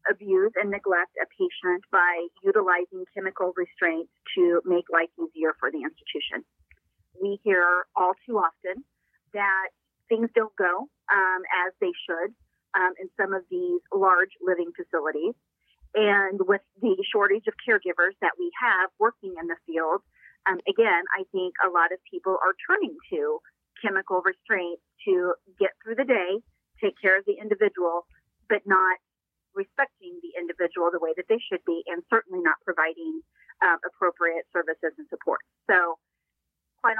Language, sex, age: English, female, 30-49